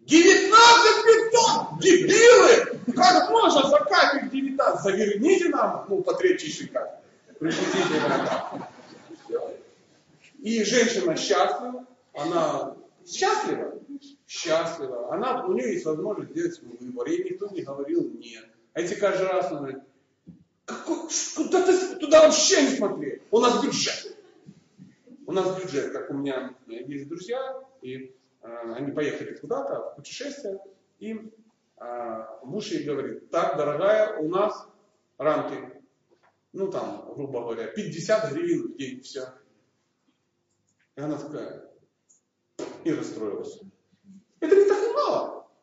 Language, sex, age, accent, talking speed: Russian, male, 40-59, native, 120 wpm